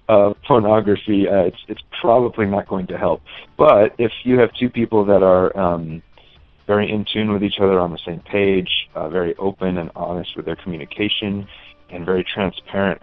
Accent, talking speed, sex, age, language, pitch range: American, 185 wpm, male, 30-49, English, 80-100 Hz